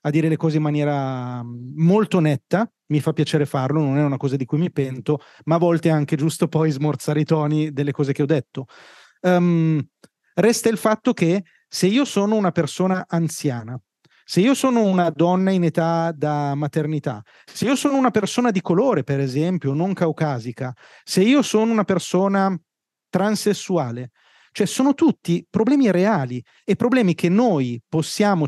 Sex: male